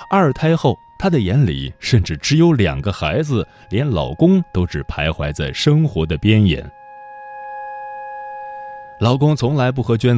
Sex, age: male, 20-39